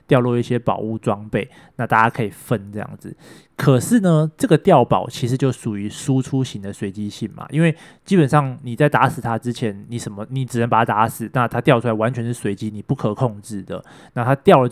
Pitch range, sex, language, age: 115-145 Hz, male, Chinese, 20-39